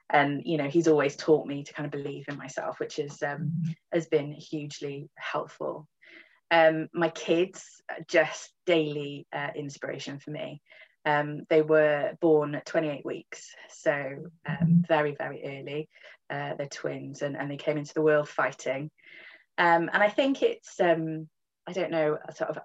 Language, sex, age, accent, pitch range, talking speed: English, female, 20-39, British, 150-160 Hz, 170 wpm